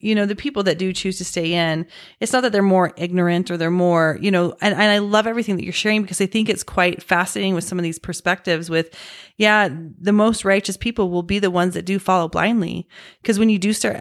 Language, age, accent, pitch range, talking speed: English, 30-49, American, 175-210 Hz, 255 wpm